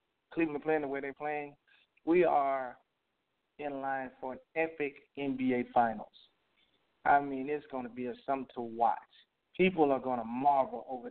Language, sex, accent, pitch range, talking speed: English, male, American, 130-155 Hz, 160 wpm